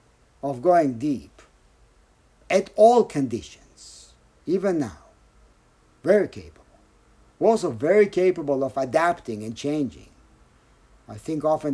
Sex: male